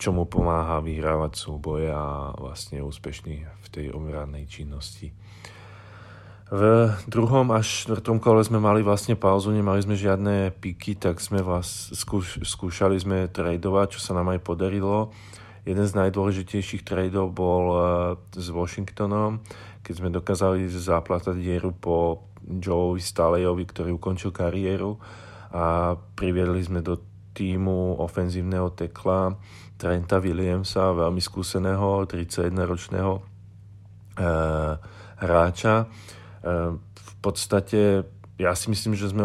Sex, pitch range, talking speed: male, 85-100 Hz, 115 wpm